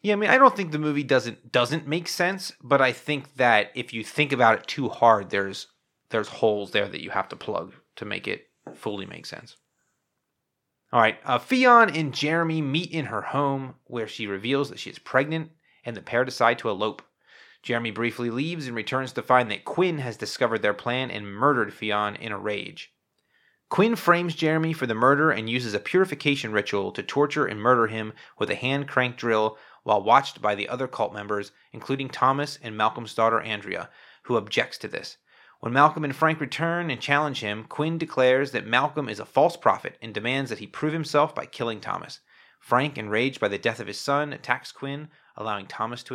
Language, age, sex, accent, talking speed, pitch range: English, 30-49, male, American, 205 wpm, 110-150 Hz